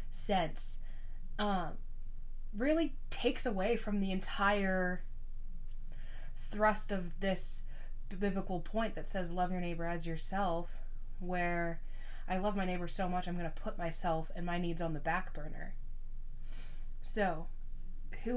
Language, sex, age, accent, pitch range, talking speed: English, female, 20-39, American, 170-205 Hz, 135 wpm